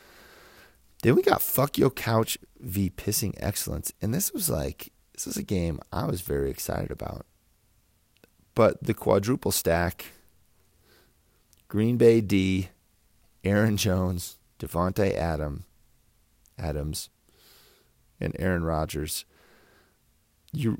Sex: male